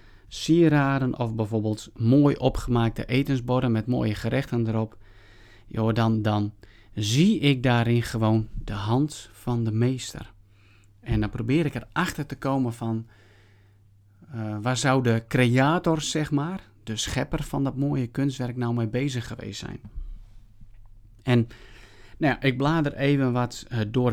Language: Dutch